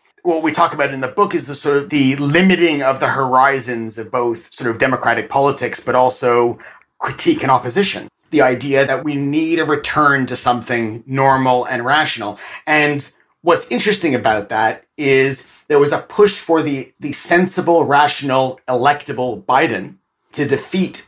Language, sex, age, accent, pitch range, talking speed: English, male, 30-49, American, 125-155 Hz, 165 wpm